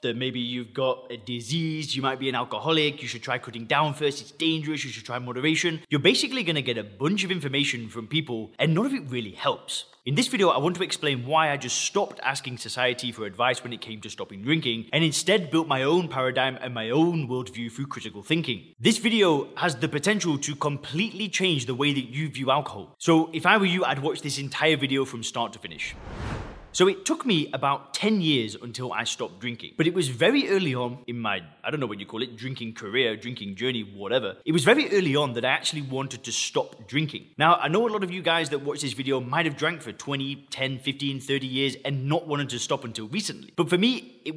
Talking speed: 240 wpm